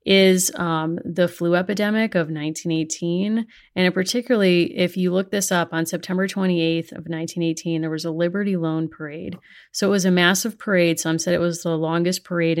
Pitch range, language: 165-190 Hz, English